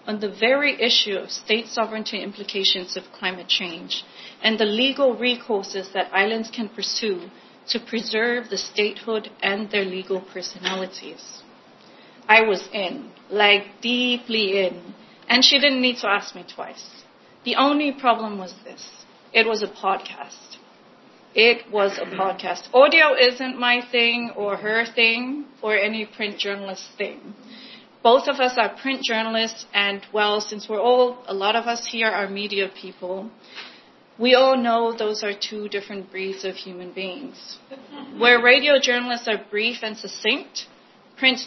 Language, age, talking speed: English, 30-49, 150 wpm